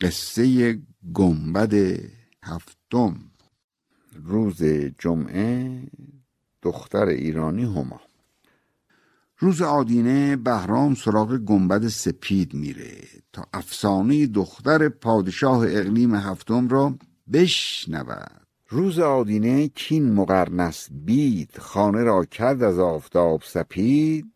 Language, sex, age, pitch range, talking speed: Persian, male, 60-79, 95-135 Hz, 85 wpm